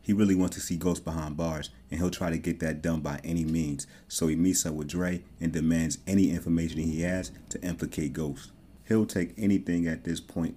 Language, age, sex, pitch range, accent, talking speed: English, 30-49, male, 80-90 Hz, American, 220 wpm